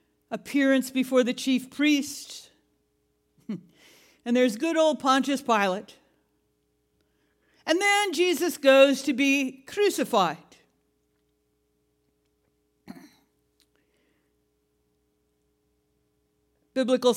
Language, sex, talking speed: English, female, 65 wpm